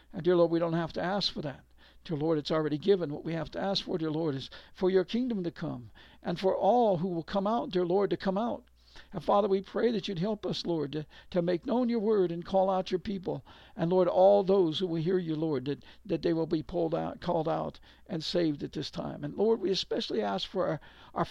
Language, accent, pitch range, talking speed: English, American, 160-200 Hz, 260 wpm